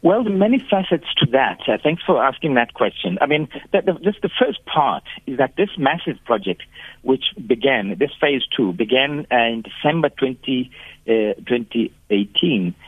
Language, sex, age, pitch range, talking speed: English, male, 60-79, 110-150 Hz, 170 wpm